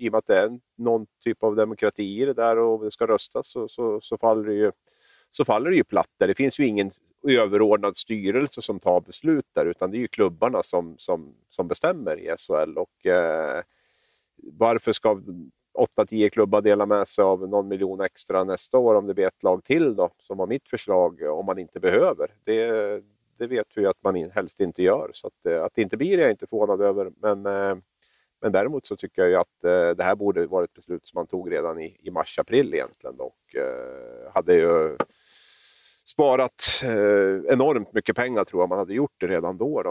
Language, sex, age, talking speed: Swedish, male, 40-59, 210 wpm